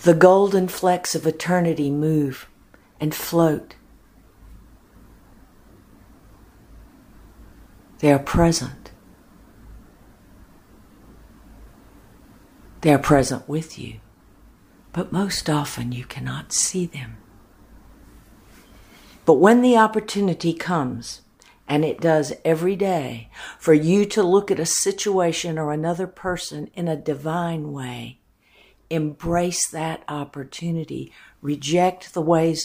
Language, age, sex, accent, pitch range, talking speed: English, 60-79, female, American, 125-165 Hz, 95 wpm